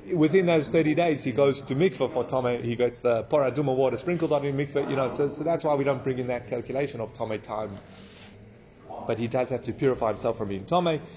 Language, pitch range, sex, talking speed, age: English, 120-160 Hz, male, 240 wpm, 30-49